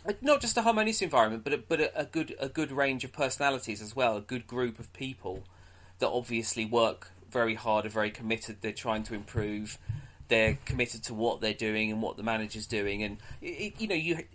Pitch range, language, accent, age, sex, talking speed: 105-125 Hz, English, British, 30-49, male, 220 wpm